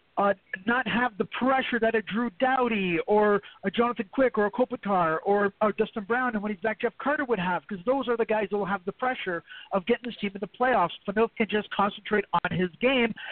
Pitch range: 205-250 Hz